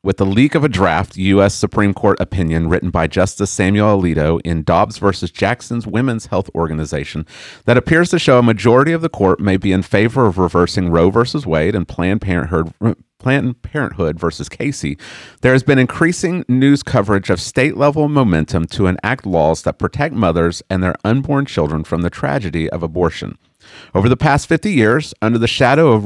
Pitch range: 85-125 Hz